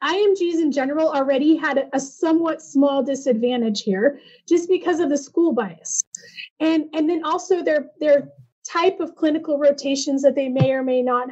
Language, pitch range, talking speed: English, 265-325 Hz, 170 wpm